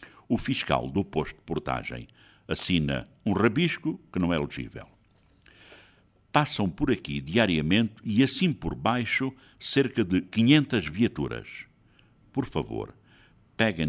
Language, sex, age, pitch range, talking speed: Portuguese, male, 60-79, 85-120 Hz, 120 wpm